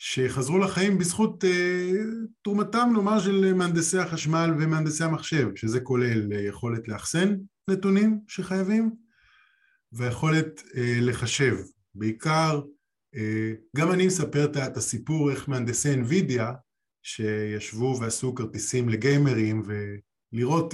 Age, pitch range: 20-39, 115-160 Hz